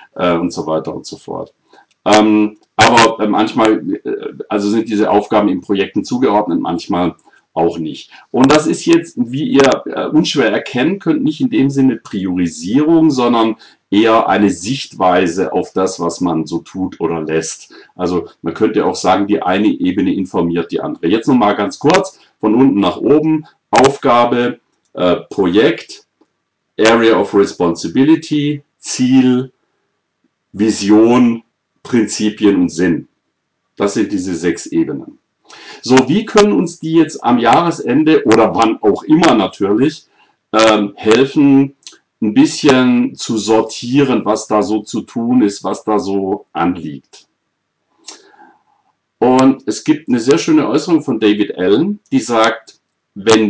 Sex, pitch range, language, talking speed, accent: male, 100-155 Hz, German, 135 wpm, German